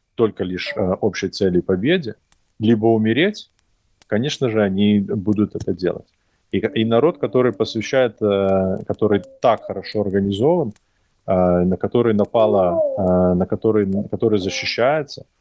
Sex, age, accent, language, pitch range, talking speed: male, 20-39, native, Russian, 90-110 Hz, 130 wpm